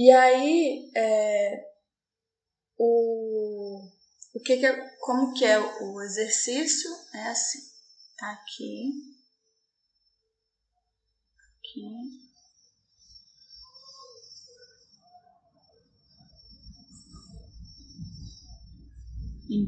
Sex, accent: female, Brazilian